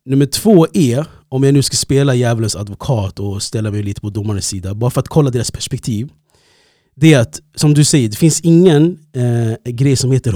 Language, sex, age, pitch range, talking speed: Swedish, male, 30-49, 115-160 Hz, 210 wpm